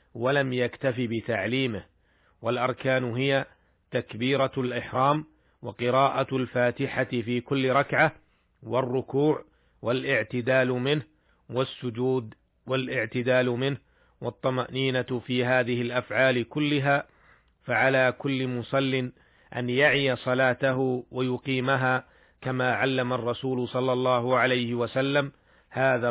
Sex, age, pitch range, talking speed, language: male, 40-59, 120-135 Hz, 85 wpm, Arabic